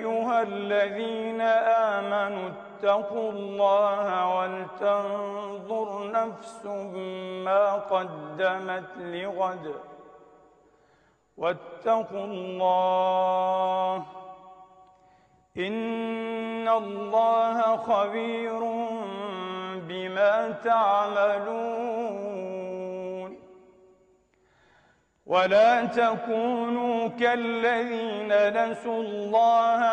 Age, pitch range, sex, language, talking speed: 40-59, 185-225 Hz, male, Arabic, 45 wpm